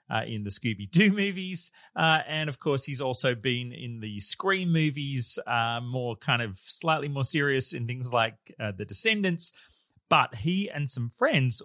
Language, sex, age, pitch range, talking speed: English, male, 30-49, 115-150 Hz, 175 wpm